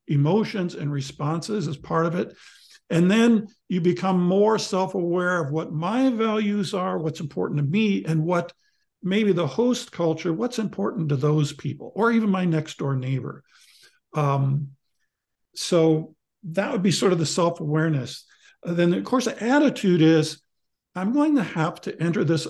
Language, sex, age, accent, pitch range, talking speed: English, male, 50-69, American, 155-215 Hz, 165 wpm